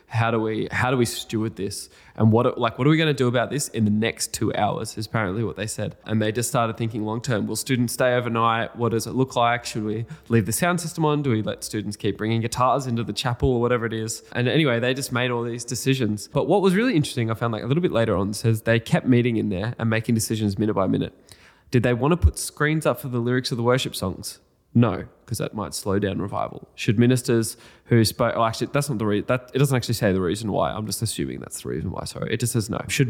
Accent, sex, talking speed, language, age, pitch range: Australian, male, 275 wpm, English, 20-39, 110-130 Hz